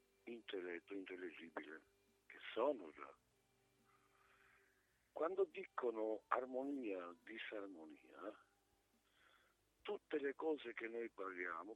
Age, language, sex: 60-79, Italian, male